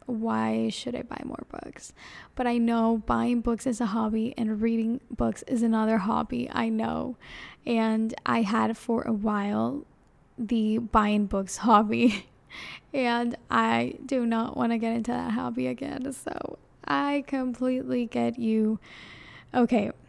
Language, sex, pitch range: English, female, 215-245 Hz